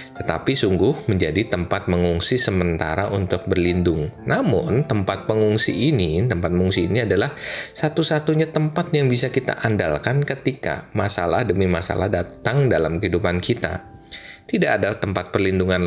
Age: 20-39